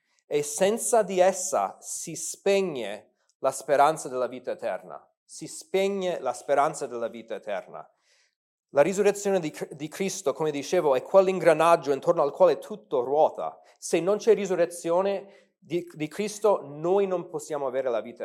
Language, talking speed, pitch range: Italian, 140 wpm, 155-205 Hz